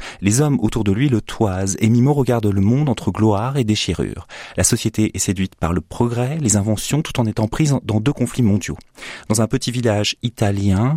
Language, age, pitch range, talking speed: French, 30-49, 95-120 Hz, 210 wpm